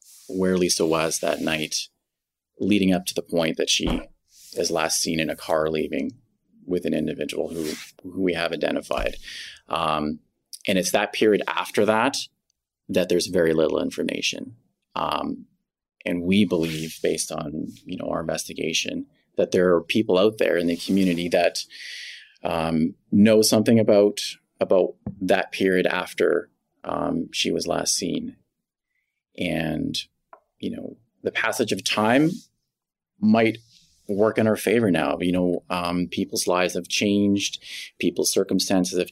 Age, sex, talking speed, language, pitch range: 30-49, male, 145 wpm, English, 90-105 Hz